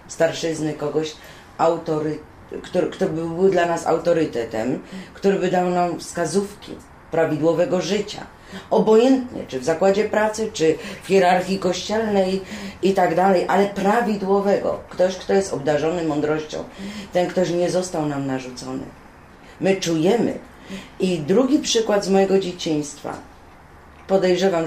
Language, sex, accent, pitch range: Polish, female, native, 145-190 Hz